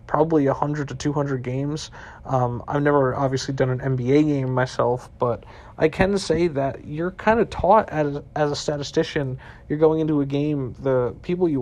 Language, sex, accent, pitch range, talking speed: English, male, American, 135-165 Hz, 175 wpm